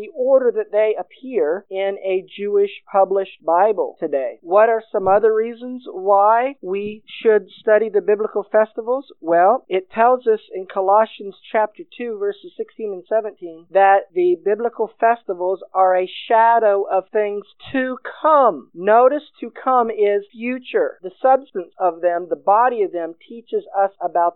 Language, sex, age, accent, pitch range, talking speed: English, male, 50-69, American, 195-250 Hz, 150 wpm